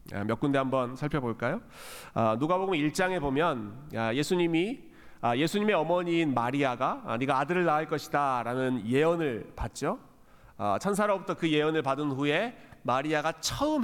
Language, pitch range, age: Korean, 130-180 Hz, 40-59